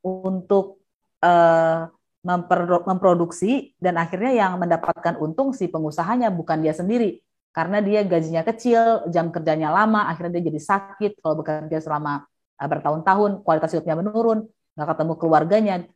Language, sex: Indonesian, female